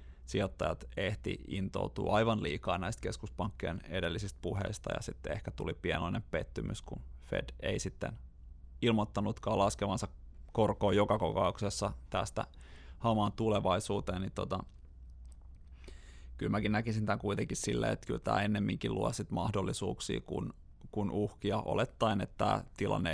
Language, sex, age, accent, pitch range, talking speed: Finnish, male, 30-49, native, 85-110 Hz, 125 wpm